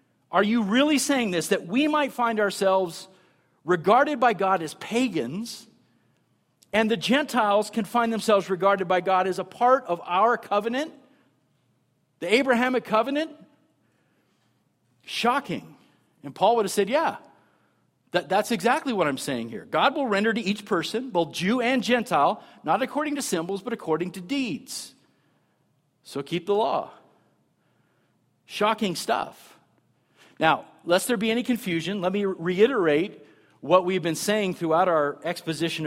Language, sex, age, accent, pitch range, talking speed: English, male, 50-69, American, 175-235 Hz, 145 wpm